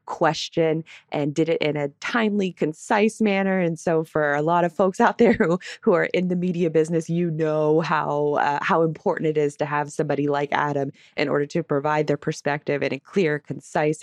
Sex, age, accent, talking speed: female, 20-39, American, 205 wpm